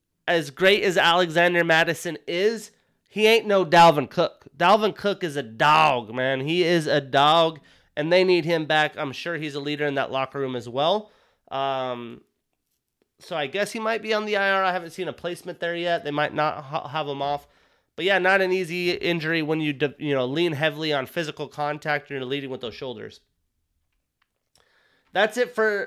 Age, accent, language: 30-49, American, English